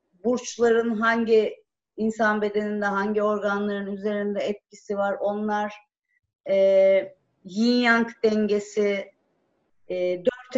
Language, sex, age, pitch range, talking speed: Turkish, female, 50-69, 195-265 Hz, 90 wpm